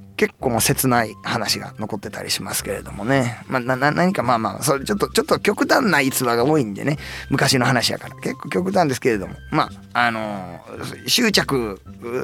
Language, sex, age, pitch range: Japanese, male, 20-39, 110-155 Hz